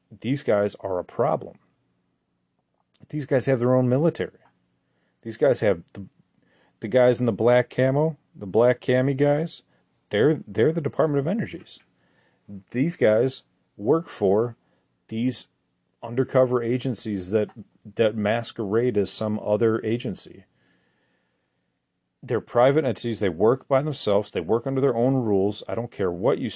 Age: 40-59